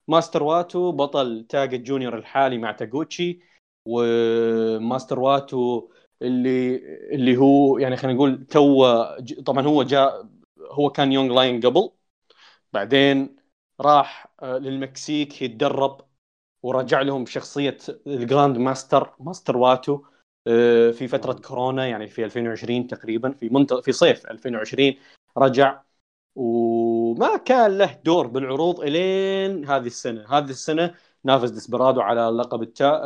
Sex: male